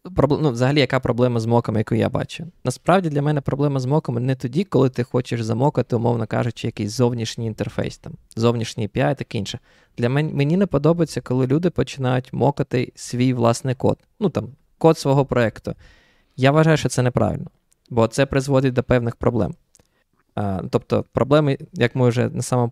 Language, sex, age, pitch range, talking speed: Ukrainian, male, 20-39, 120-145 Hz, 170 wpm